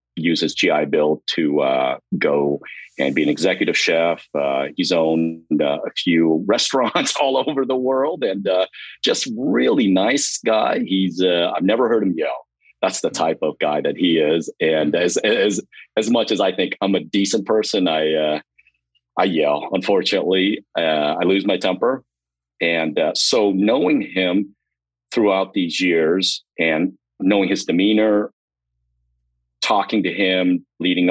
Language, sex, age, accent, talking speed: English, male, 40-59, American, 160 wpm